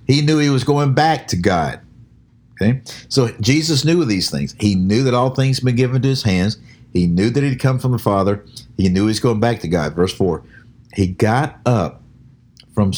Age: 50-69